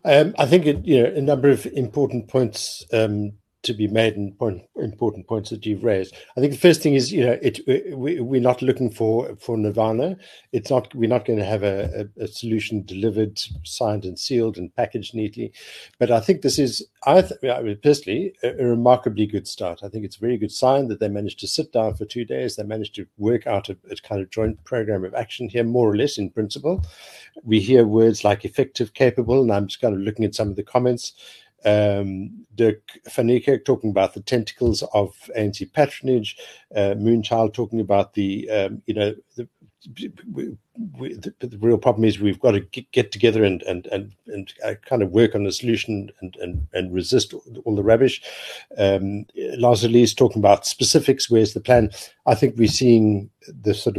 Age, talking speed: 60-79, 210 wpm